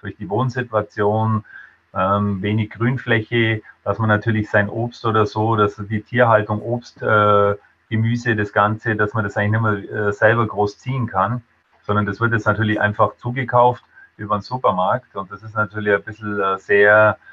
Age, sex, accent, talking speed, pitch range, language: 30-49, male, German, 160 wpm, 105-120 Hz, German